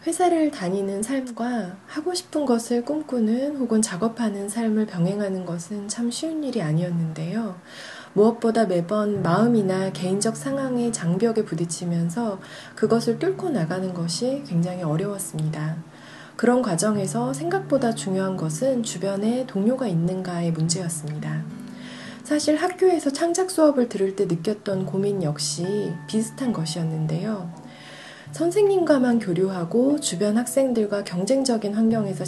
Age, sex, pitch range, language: 30-49, female, 175-245 Hz, Korean